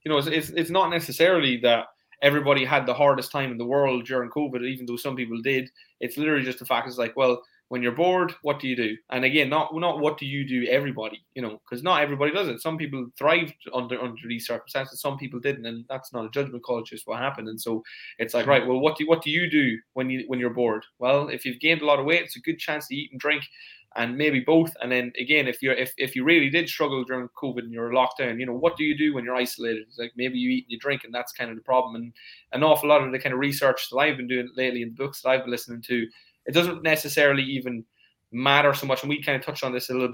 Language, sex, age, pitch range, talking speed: English, male, 20-39, 125-145 Hz, 285 wpm